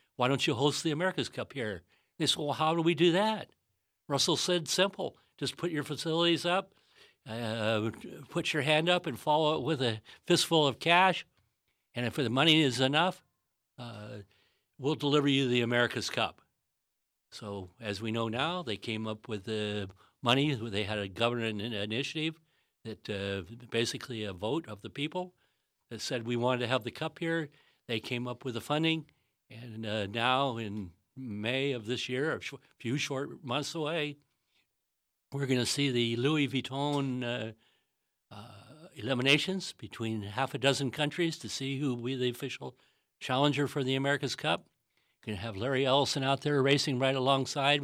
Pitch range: 115-150 Hz